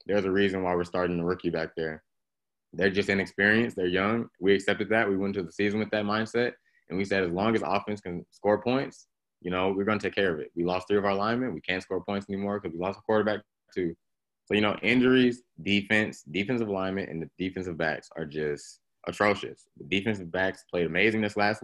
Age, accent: 20-39, American